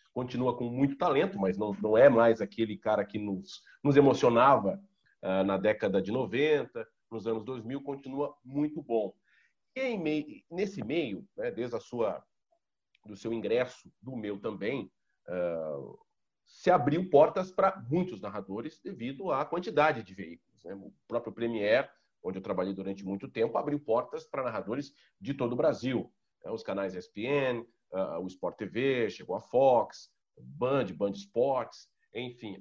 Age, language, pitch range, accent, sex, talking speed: 40-59, Portuguese, 110-165 Hz, Brazilian, male, 155 wpm